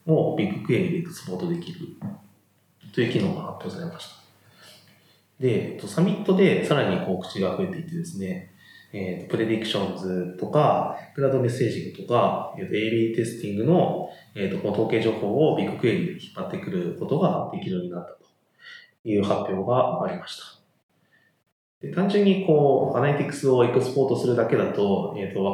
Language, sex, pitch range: Japanese, male, 100-170 Hz